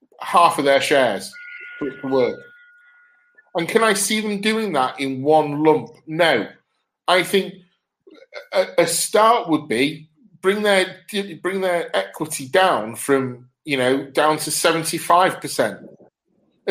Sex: male